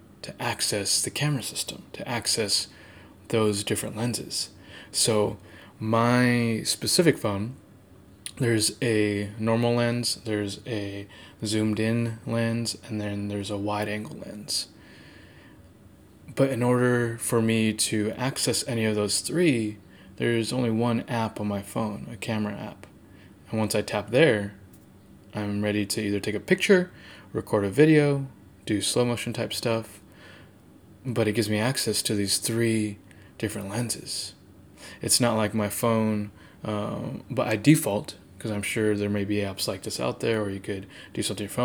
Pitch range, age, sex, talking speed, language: 100-115 Hz, 20-39, male, 155 wpm, English